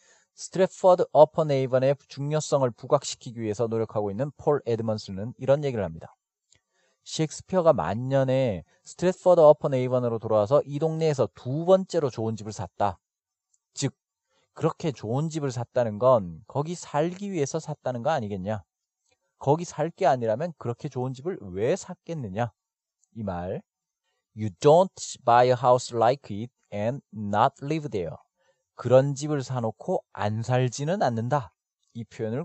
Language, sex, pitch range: Korean, male, 115-160 Hz